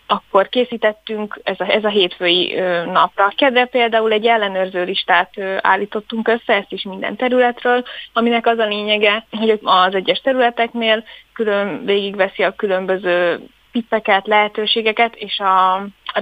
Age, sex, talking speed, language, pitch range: 20-39, female, 135 wpm, Hungarian, 190-230 Hz